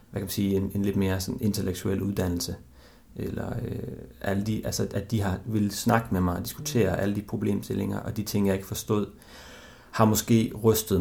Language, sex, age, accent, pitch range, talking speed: Danish, male, 30-49, native, 100-115 Hz, 195 wpm